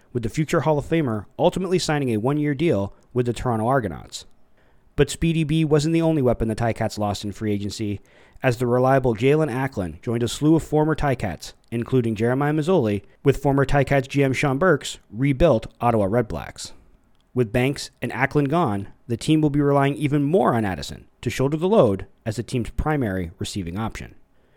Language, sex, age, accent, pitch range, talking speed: English, male, 30-49, American, 110-145 Hz, 185 wpm